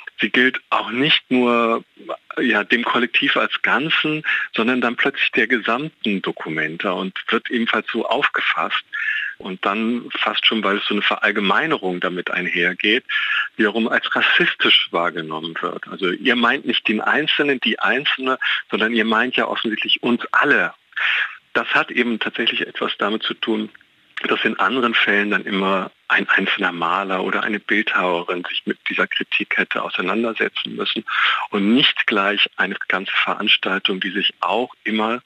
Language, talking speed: German, 150 wpm